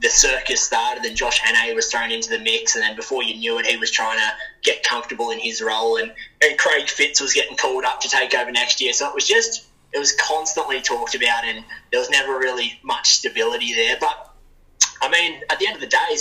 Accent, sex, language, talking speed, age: Australian, male, English, 240 wpm, 20-39